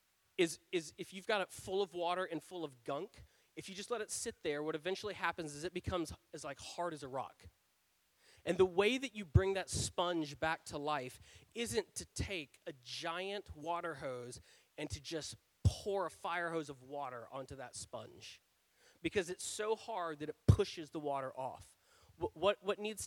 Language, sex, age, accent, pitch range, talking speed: English, male, 30-49, American, 130-175 Hz, 195 wpm